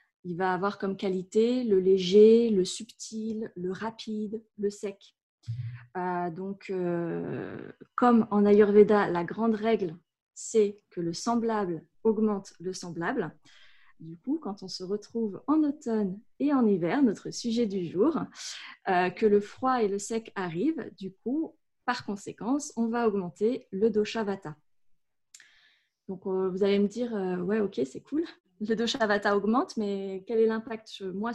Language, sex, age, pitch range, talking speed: French, female, 20-39, 185-225 Hz, 155 wpm